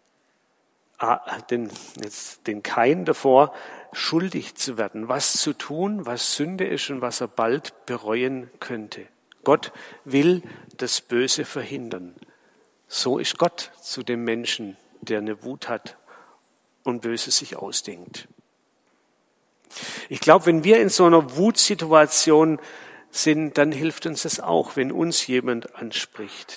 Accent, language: German, German